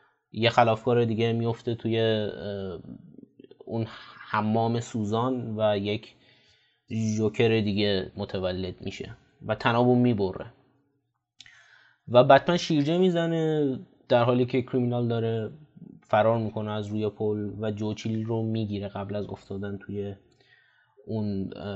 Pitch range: 105-125 Hz